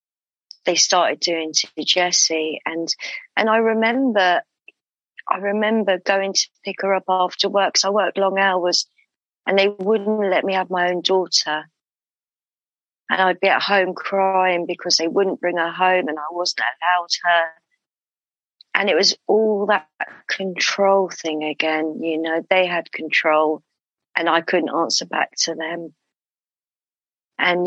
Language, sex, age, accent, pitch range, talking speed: English, female, 40-59, British, 170-195 Hz, 150 wpm